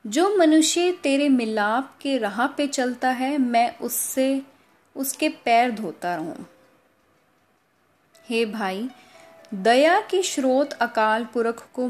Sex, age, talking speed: female, 10-29, 110 wpm